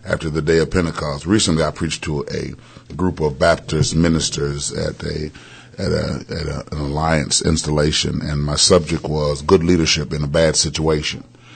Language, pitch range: English, 80-105 Hz